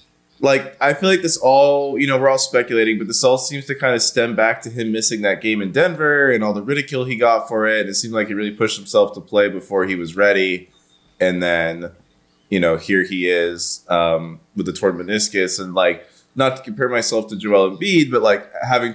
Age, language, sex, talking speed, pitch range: 20-39, English, male, 230 wpm, 95-135 Hz